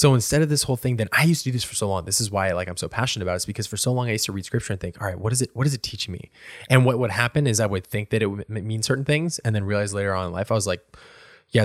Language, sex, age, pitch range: English, male, 20-39, 100-130 Hz